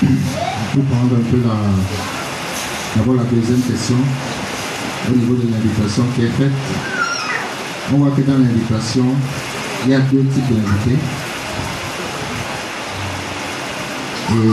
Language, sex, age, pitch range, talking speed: French, male, 50-69, 115-135 Hz, 115 wpm